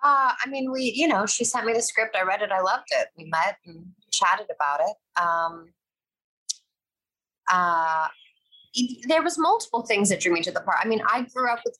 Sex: female